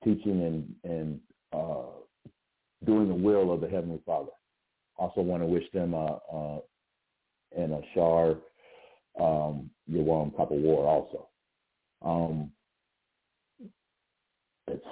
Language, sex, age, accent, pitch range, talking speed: English, male, 60-79, American, 80-95 Hz, 100 wpm